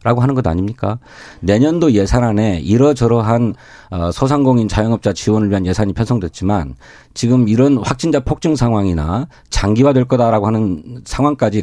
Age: 40-59